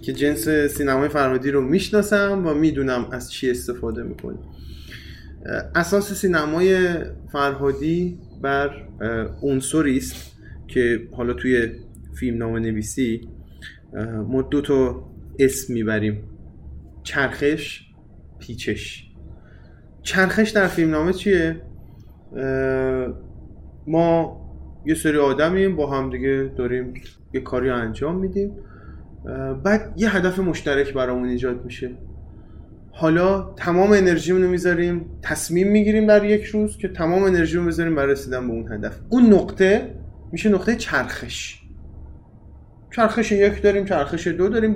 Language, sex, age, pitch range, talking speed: Persian, male, 30-49, 115-175 Hz, 110 wpm